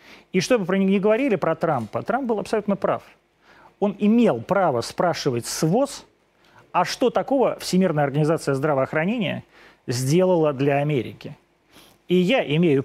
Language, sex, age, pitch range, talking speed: Russian, male, 30-49, 135-185 Hz, 125 wpm